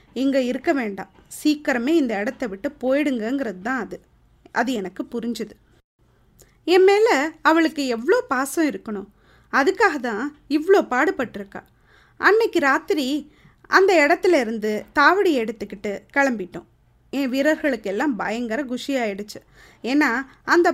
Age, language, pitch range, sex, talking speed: 20-39, Tamil, 230-320 Hz, female, 105 wpm